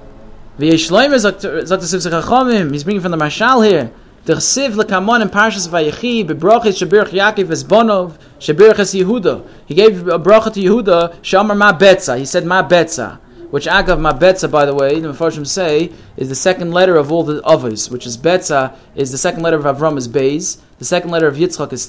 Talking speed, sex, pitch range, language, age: 145 wpm, male, 155-215 Hz, English, 30-49